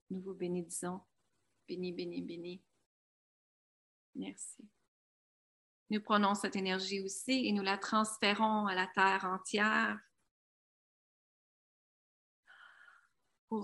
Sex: female